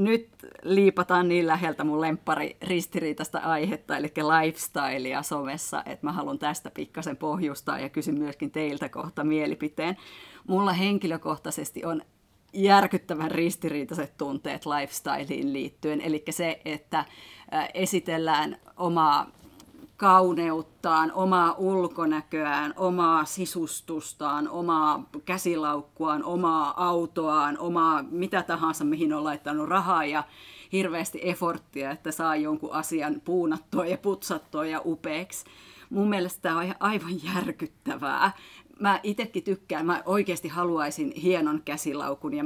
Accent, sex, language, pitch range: native, female, Finnish, 155-185 Hz